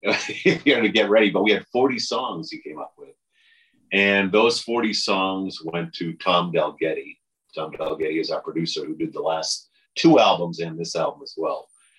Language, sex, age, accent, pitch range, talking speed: English, male, 40-59, American, 85-120 Hz, 185 wpm